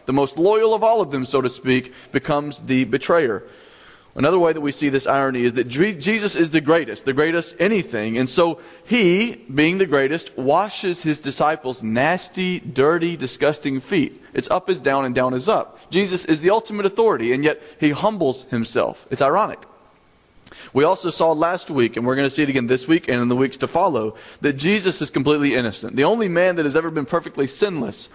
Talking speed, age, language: 205 wpm, 30-49, English